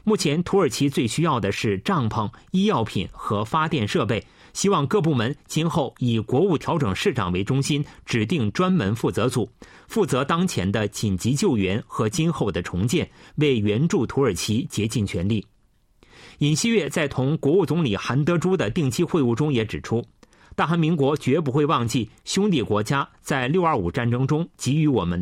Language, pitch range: Chinese, 110-170 Hz